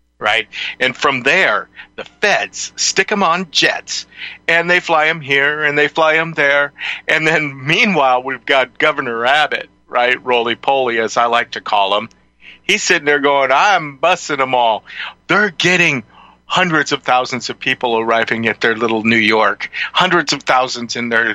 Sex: male